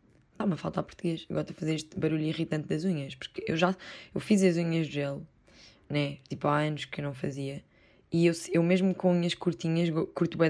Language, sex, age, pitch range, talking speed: Portuguese, female, 10-29, 155-185 Hz, 235 wpm